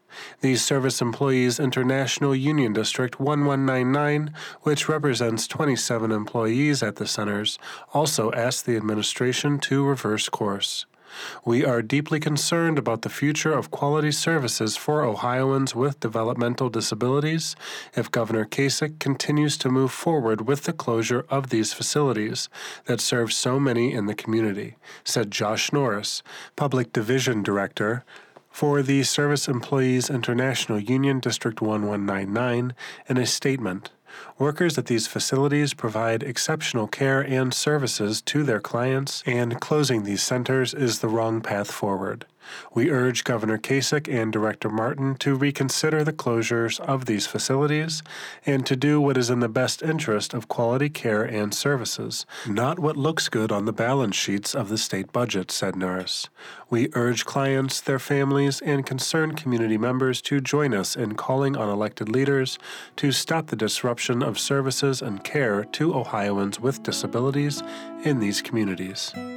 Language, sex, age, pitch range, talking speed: English, male, 30-49, 115-140 Hz, 145 wpm